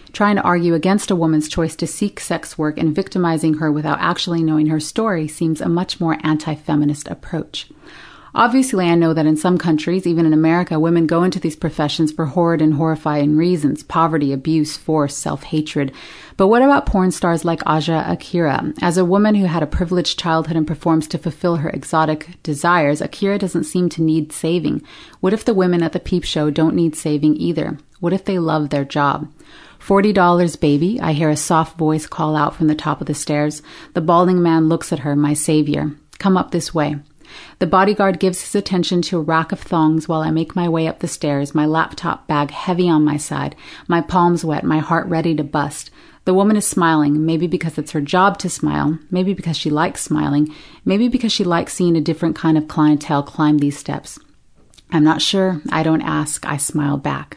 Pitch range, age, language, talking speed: 155-180 Hz, 30-49, English, 205 wpm